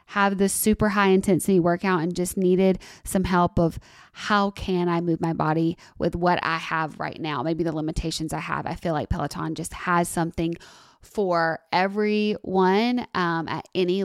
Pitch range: 165-195 Hz